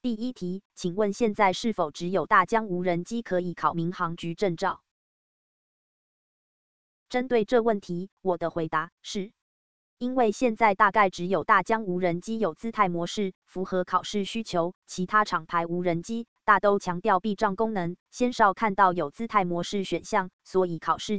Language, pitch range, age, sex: Chinese, 175-215 Hz, 20-39, female